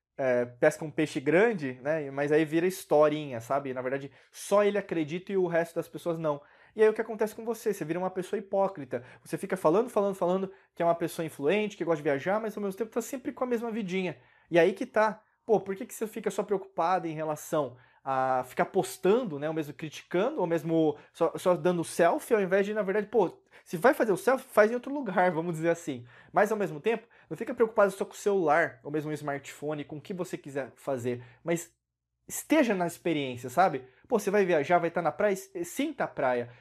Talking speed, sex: 230 wpm, male